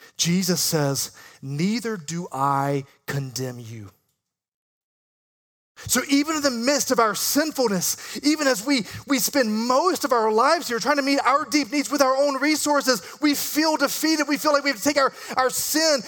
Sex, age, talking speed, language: male, 30-49, 180 wpm, English